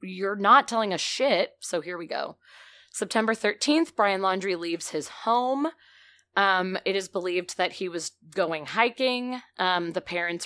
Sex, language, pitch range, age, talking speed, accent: female, English, 165-245 Hz, 20-39, 160 wpm, American